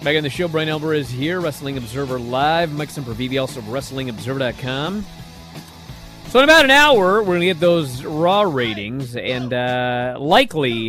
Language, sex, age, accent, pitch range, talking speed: English, male, 30-49, American, 120-150 Hz, 165 wpm